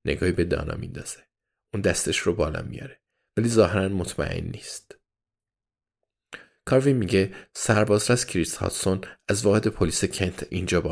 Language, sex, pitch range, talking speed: Persian, male, 90-120 Hz, 135 wpm